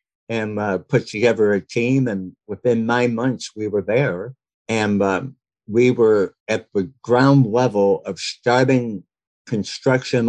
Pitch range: 105-125 Hz